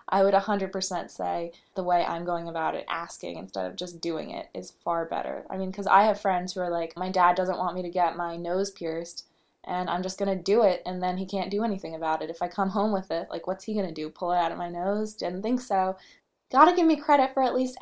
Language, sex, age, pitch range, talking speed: English, female, 20-39, 175-210 Hz, 265 wpm